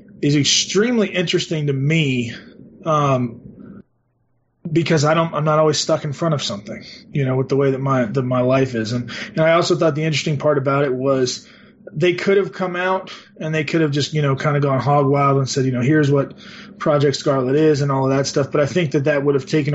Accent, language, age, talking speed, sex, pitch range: American, English, 30-49, 235 wpm, male, 135-165 Hz